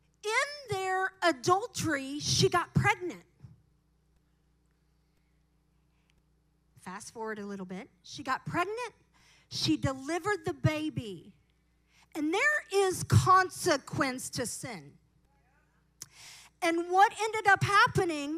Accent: American